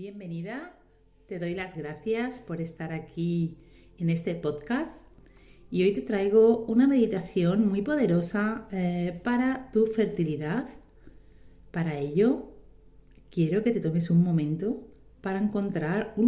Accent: Spanish